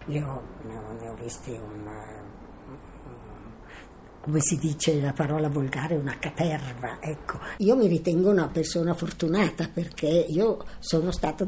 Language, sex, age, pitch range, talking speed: Italian, female, 50-69, 155-190 Hz, 145 wpm